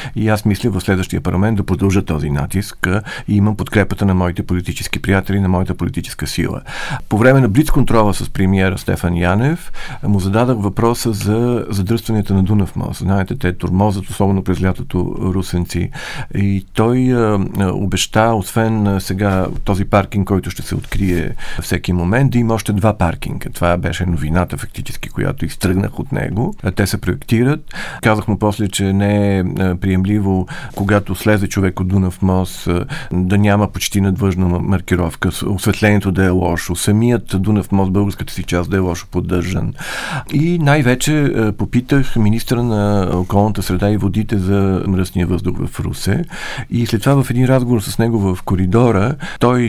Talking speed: 160 wpm